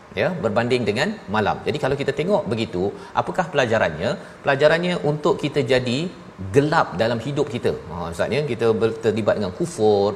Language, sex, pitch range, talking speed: Malayalam, male, 110-135 Hz, 150 wpm